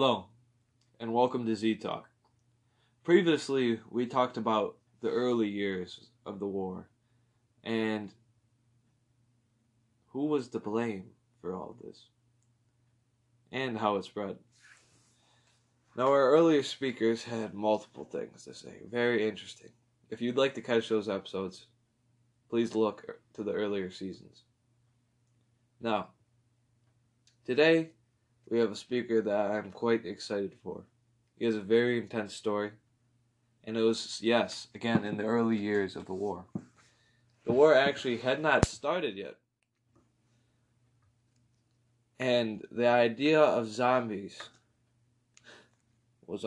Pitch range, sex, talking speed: 110-120 Hz, male, 120 wpm